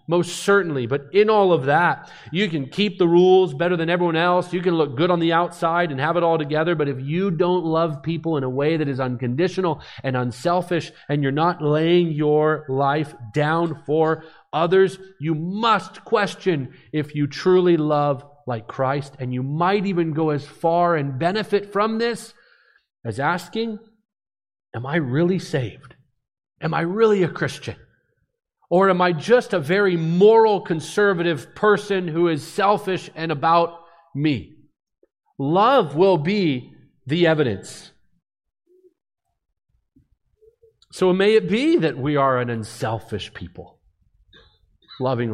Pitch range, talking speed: 140-180 Hz, 150 wpm